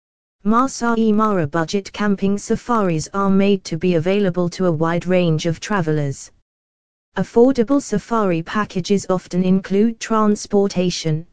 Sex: female